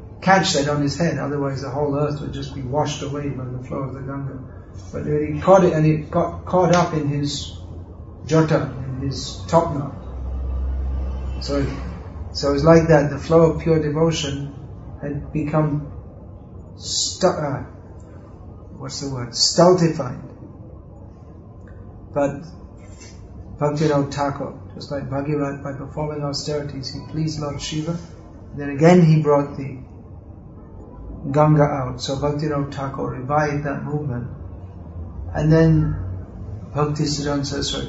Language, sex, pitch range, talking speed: English, male, 95-150 Hz, 140 wpm